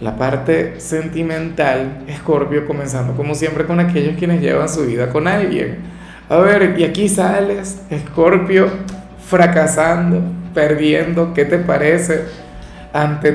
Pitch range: 140-180 Hz